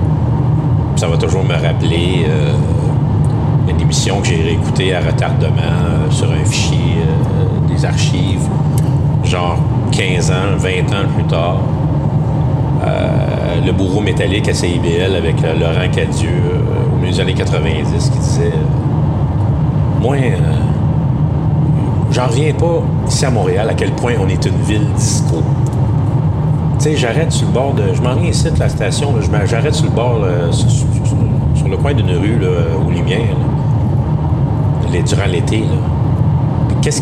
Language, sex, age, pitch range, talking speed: French, male, 50-69, 125-145 Hz, 155 wpm